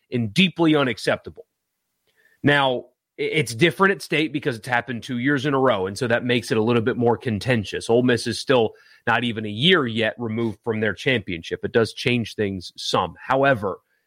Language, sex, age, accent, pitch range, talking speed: English, male, 30-49, American, 115-155 Hz, 190 wpm